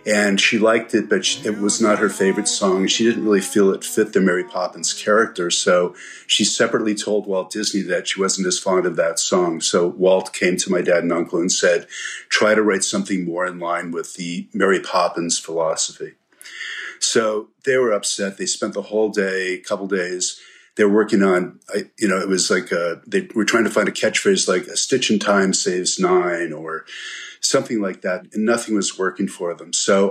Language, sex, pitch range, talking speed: English, male, 95-105 Hz, 205 wpm